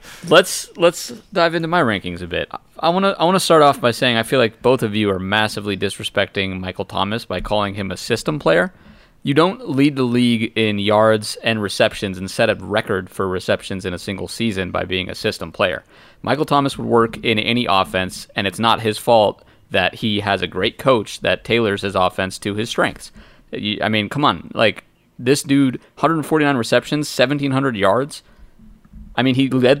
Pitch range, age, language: 100-135 Hz, 30-49, English